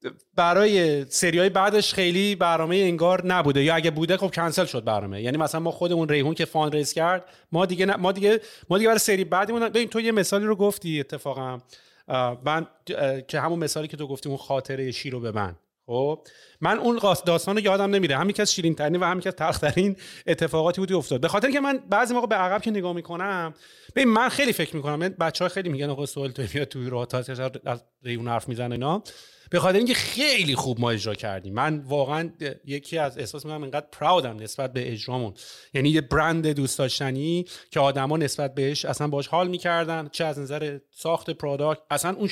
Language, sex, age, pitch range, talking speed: Persian, male, 30-49, 140-185 Hz, 195 wpm